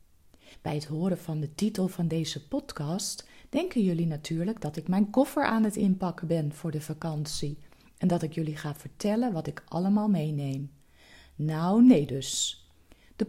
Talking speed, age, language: 165 wpm, 40-59, Dutch